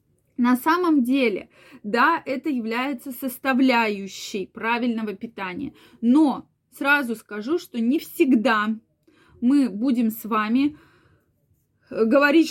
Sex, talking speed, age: female, 95 wpm, 20-39